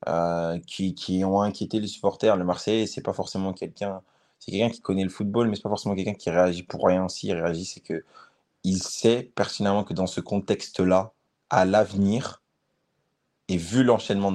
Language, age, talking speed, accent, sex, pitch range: French, 20-39, 185 wpm, French, male, 95-110 Hz